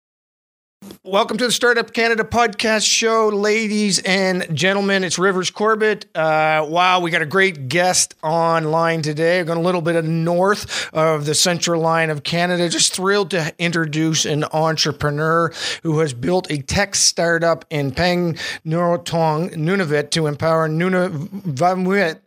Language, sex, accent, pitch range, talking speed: English, male, American, 155-180 Hz, 140 wpm